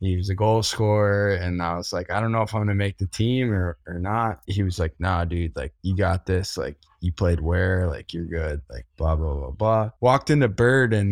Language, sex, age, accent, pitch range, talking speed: English, male, 10-29, American, 100-115 Hz, 250 wpm